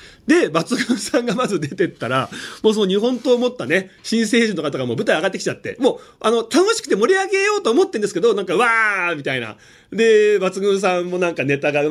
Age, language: 30-49, Japanese